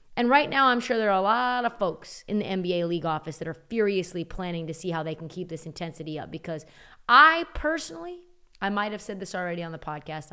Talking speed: 240 wpm